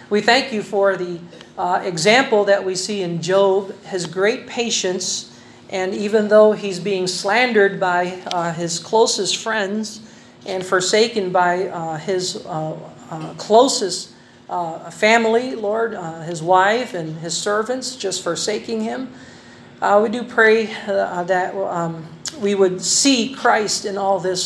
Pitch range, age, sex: 180-215 Hz, 40-59, male